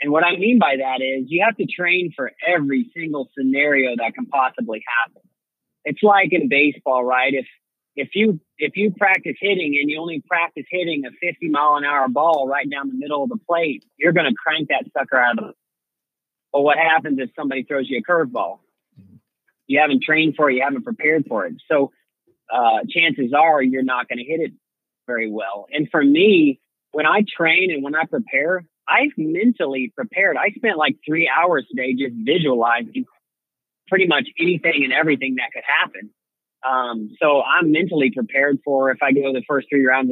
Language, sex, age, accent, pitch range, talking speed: English, male, 40-59, American, 135-200 Hz, 195 wpm